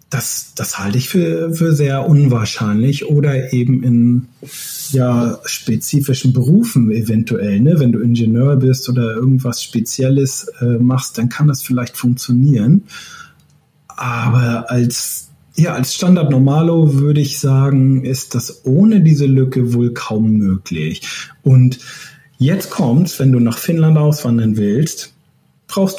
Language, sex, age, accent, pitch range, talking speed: German, male, 40-59, German, 120-150 Hz, 130 wpm